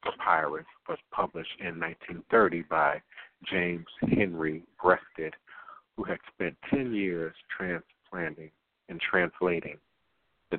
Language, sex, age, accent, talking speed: English, male, 60-79, American, 100 wpm